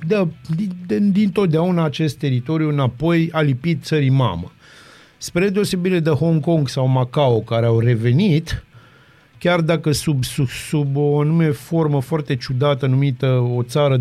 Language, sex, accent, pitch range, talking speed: Romanian, male, native, 125-165 Hz, 150 wpm